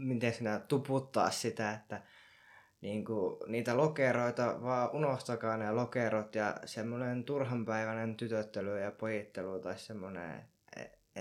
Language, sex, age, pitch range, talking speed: Finnish, male, 20-39, 105-120 Hz, 110 wpm